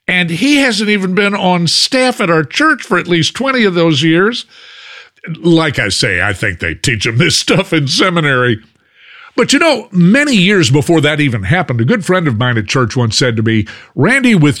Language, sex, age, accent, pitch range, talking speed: English, male, 50-69, American, 115-190 Hz, 210 wpm